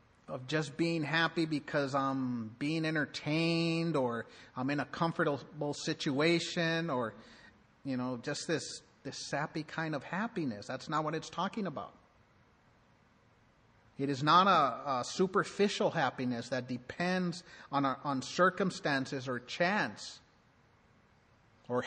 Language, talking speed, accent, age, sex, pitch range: English, 125 wpm, American, 50-69, male, 135-175 Hz